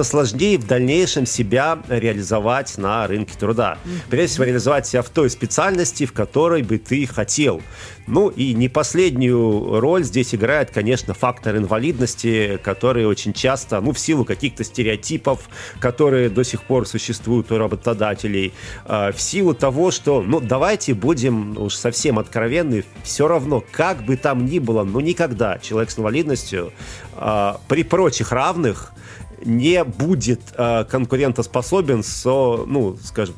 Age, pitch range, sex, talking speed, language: 40-59, 105-135 Hz, male, 140 wpm, Russian